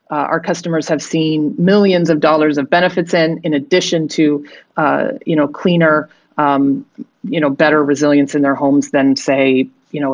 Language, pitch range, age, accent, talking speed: English, 145-175 Hz, 40-59, American, 180 wpm